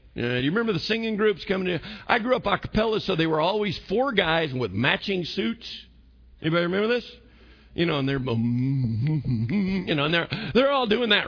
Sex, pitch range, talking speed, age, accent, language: male, 130-210 Hz, 200 wpm, 50-69, American, English